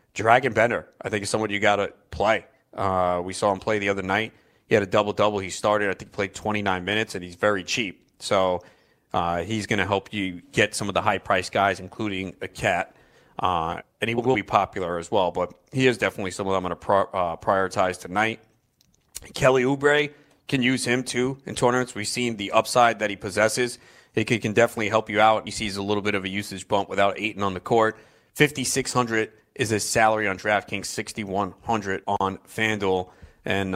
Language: English